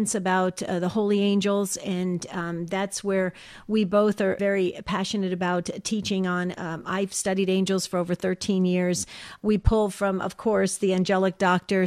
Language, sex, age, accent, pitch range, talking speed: English, female, 50-69, American, 185-210 Hz, 165 wpm